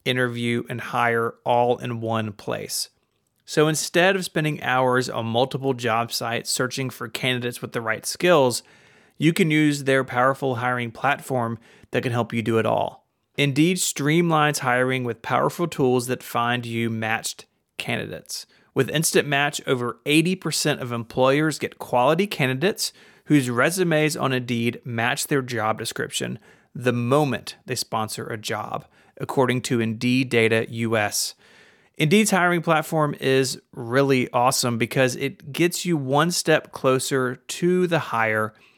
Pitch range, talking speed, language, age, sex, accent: 120-150 Hz, 145 wpm, English, 30-49, male, American